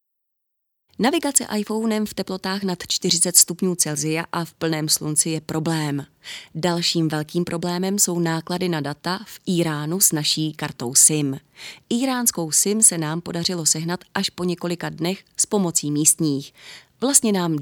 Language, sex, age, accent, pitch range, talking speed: Czech, female, 30-49, native, 155-200 Hz, 145 wpm